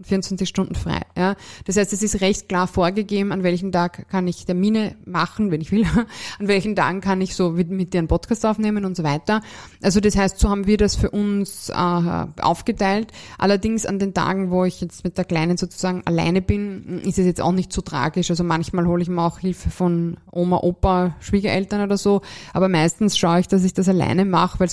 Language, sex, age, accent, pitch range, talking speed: German, female, 20-39, German, 175-200 Hz, 220 wpm